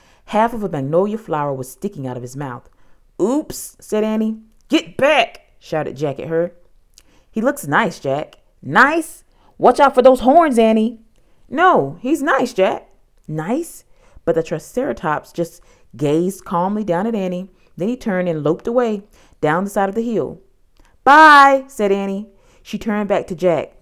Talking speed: 165 wpm